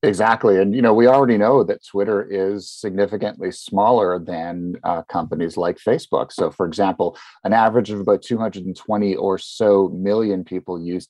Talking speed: 160 wpm